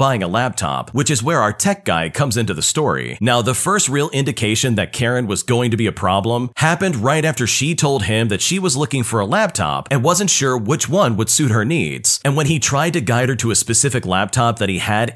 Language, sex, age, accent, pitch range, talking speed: English, male, 40-59, American, 115-150 Hz, 245 wpm